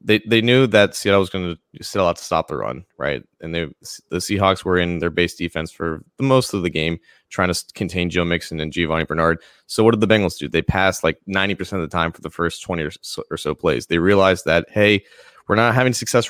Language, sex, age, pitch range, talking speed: English, male, 20-39, 90-110 Hz, 250 wpm